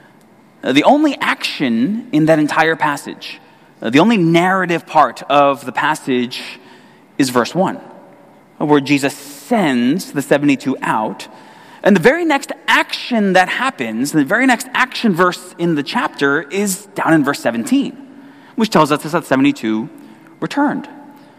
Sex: male